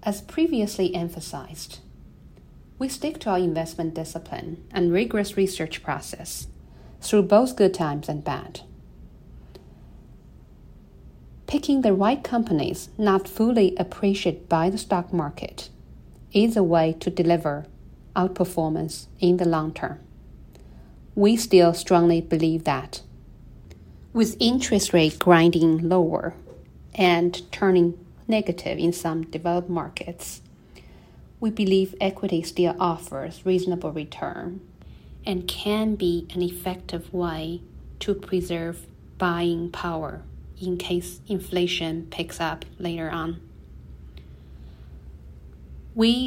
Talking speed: 105 wpm